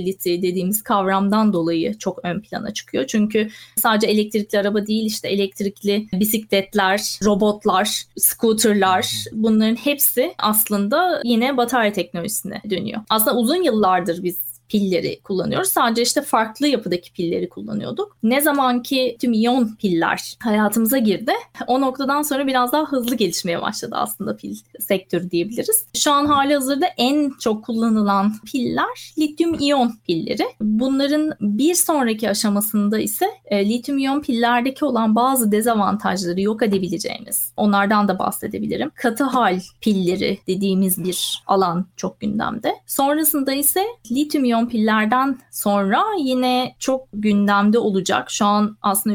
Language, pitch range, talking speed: Turkish, 195-260 Hz, 125 wpm